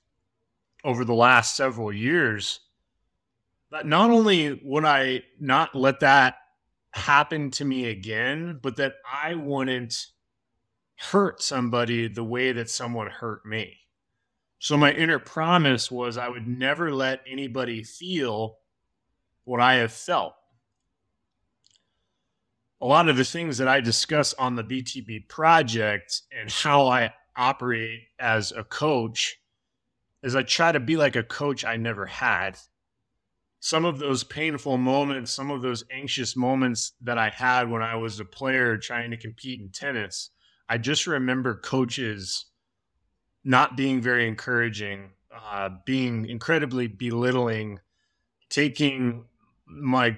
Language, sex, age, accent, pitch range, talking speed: English, male, 30-49, American, 110-135 Hz, 135 wpm